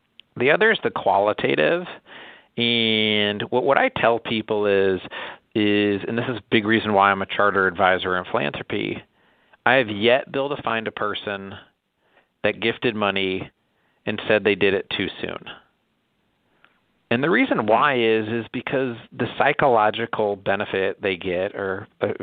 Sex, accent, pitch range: male, American, 105-120 Hz